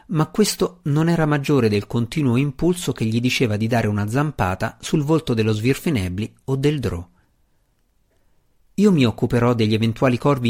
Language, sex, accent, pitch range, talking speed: Italian, male, native, 105-145 Hz, 160 wpm